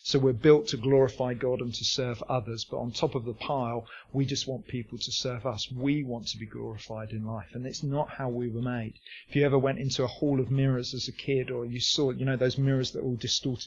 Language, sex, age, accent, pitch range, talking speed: English, male, 40-59, British, 120-140 Hz, 265 wpm